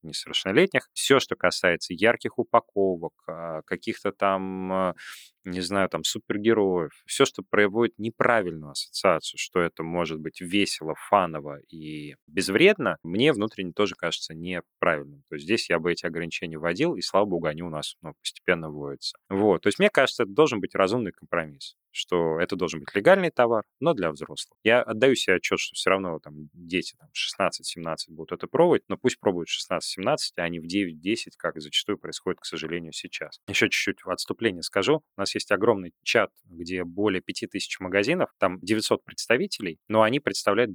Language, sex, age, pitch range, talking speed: Russian, male, 30-49, 85-105 Hz, 170 wpm